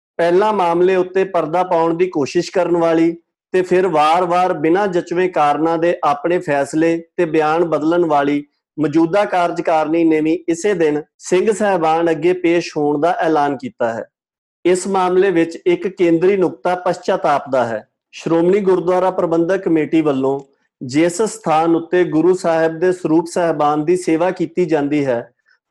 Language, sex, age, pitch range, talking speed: Punjabi, male, 50-69, 160-185 Hz, 100 wpm